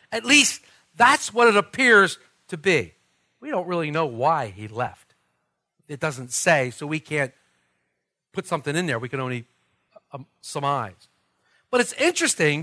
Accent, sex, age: American, male, 50-69